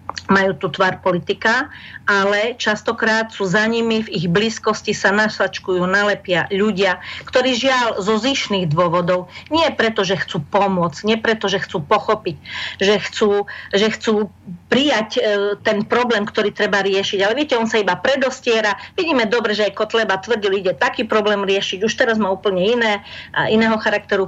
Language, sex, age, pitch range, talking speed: Slovak, female, 40-59, 185-220 Hz, 165 wpm